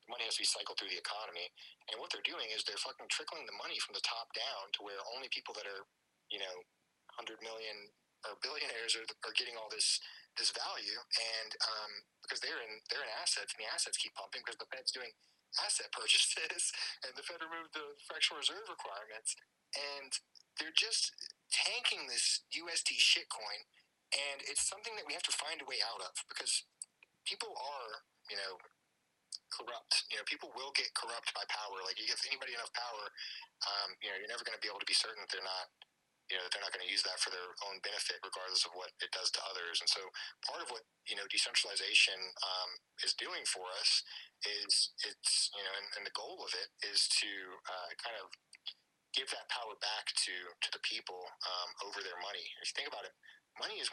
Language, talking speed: English, 210 wpm